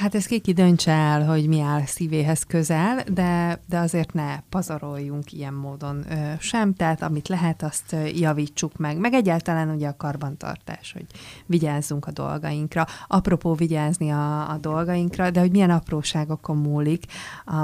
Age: 30-49